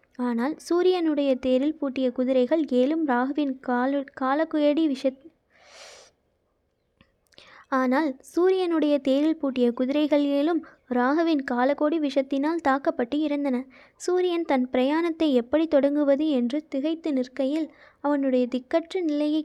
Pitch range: 260-315 Hz